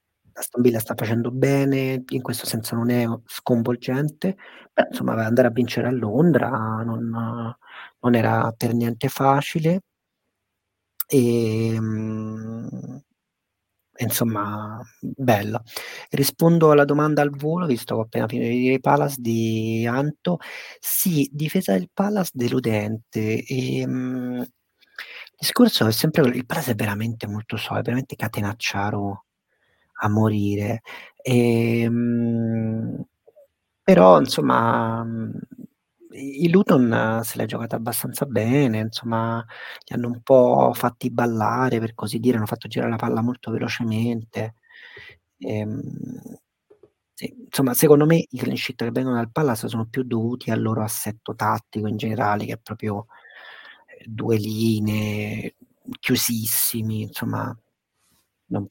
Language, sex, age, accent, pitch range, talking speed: Italian, male, 30-49, native, 110-130 Hz, 125 wpm